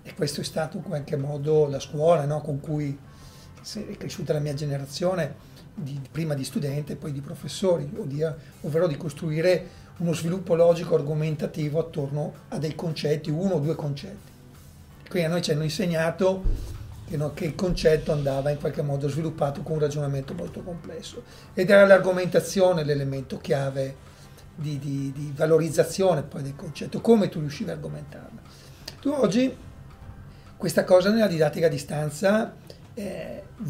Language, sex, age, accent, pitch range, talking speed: Italian, male, 40-59, native, 150-180 Hz, 155 wpm